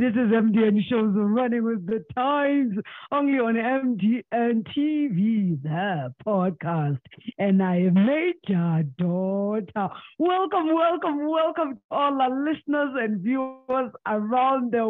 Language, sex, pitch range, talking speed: English, female, 185-275 Hz, 120 wpm